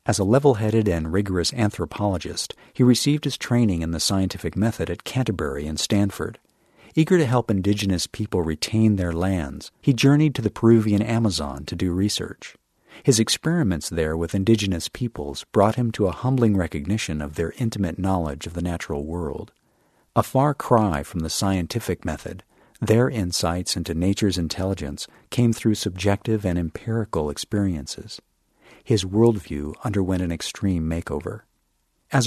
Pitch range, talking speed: 85-110 Hz, 150 wpm